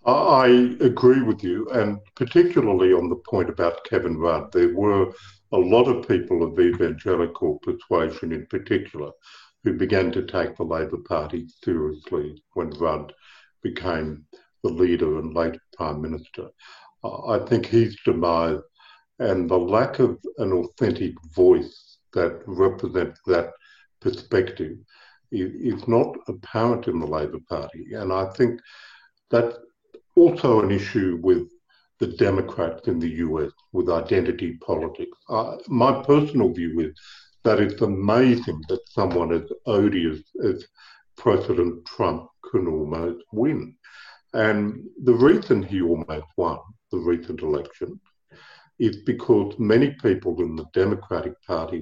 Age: 60-79